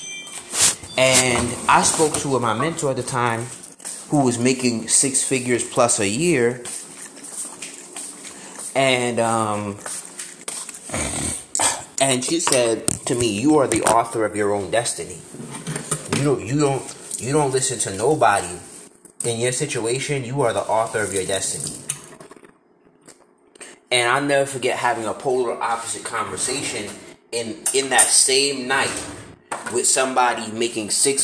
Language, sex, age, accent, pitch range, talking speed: English, male, 30-49, American, 115-140 Hz, 135 wpm